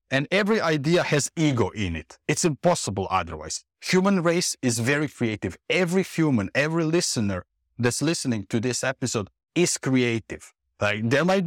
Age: 50-69